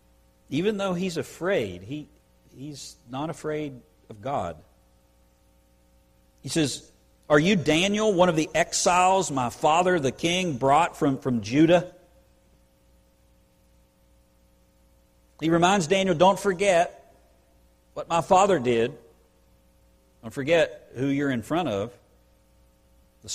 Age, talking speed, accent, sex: 50-69, 115 wpm, American, male